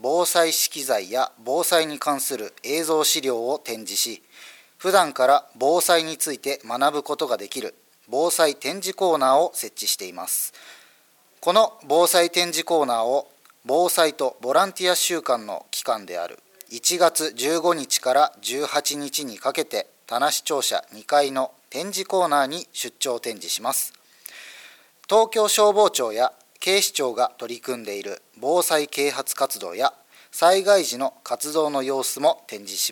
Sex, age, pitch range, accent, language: male, 40-59, 135-175 Hz, native, Japanese